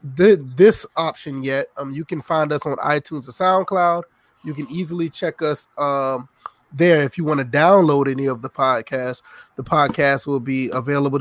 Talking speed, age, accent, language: 180 wpm, 20-39, American, English